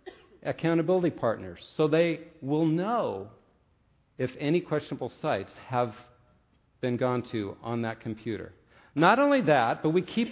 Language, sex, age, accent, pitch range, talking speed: English, male, 50-69, American, 125-170 Hz, 135 wpm